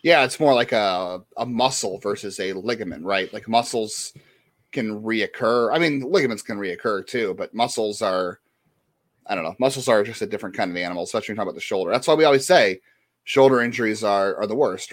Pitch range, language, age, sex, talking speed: 95-130 Hz, English, 30-49, male, 215 wpm